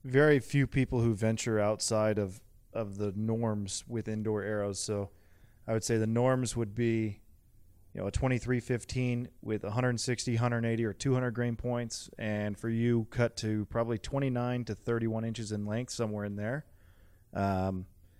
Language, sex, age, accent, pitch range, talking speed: English, male, 20-39, American, 105-120 Hz, 160 wpm